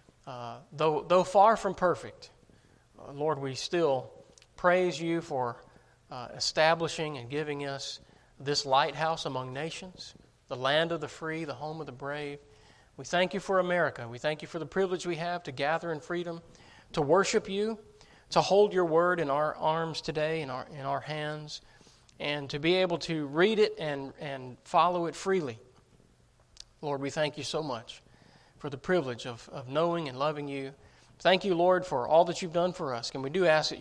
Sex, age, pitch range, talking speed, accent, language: male, 40-59, 140-180 Hz, 190 wpm, American, English